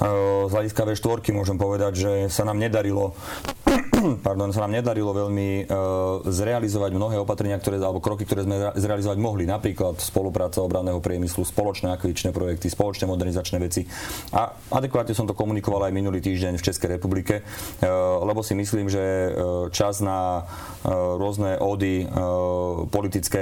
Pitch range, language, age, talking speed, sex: 95-105 Hz, Slovak, 30-49, 140 wpm, male